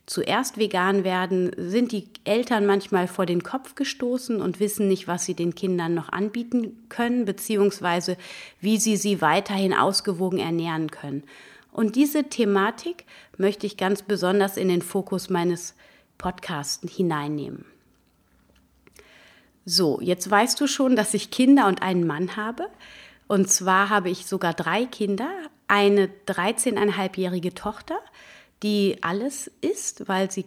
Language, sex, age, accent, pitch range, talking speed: German, female, 30-49, German, 180-220 Hz, 140 wpm